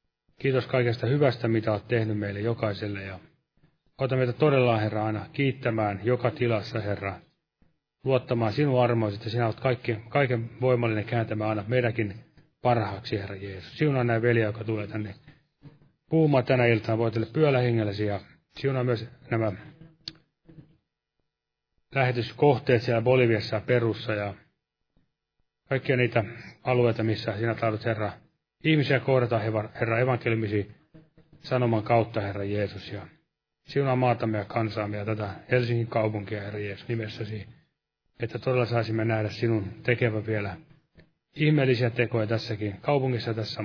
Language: Finnish